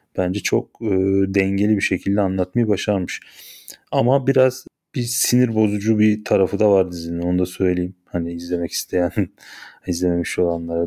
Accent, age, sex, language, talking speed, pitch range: native, 30-49, male, Turkish, 145 wpm, 90-105 Hz